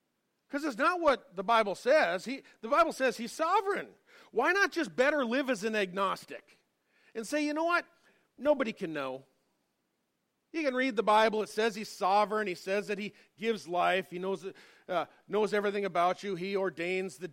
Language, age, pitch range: English, 40-59, 130-210 Hz